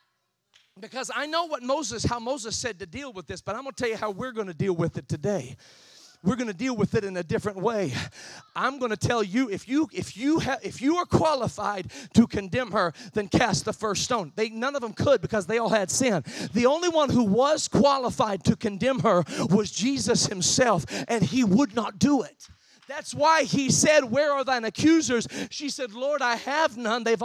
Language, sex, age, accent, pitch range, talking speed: English, male, 40-59, American, 210-285 Hz, 220 wpm